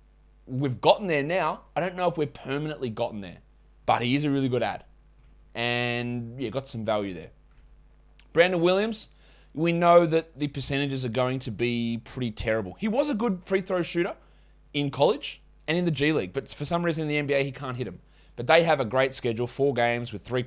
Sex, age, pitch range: male, 20-39, 120-155 Hz